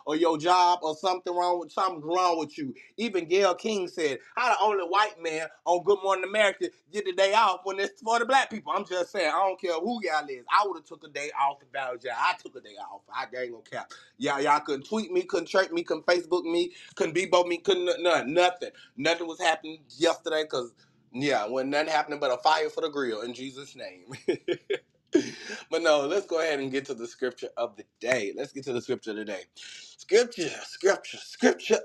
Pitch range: 120-190 Hz